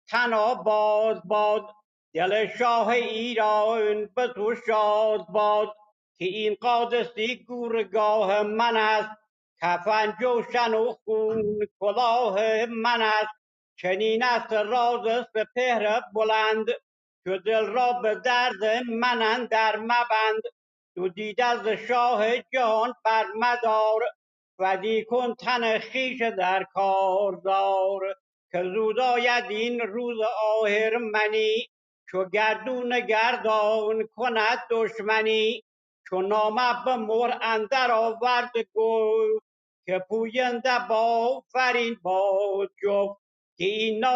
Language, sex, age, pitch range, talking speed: Persian, male, 60-79, 210-240 Hz, 100 wpm